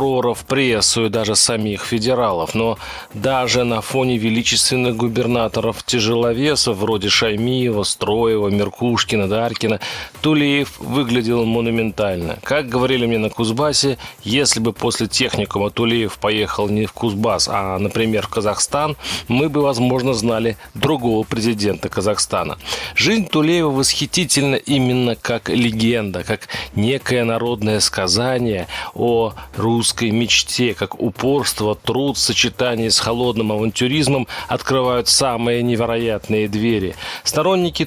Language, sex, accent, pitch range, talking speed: Russian, male, native, 110-130 Hz, 110 wpm